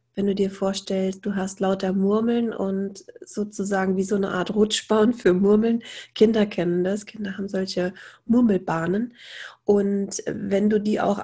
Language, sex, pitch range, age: German, female, 195-215 Hz, 30-49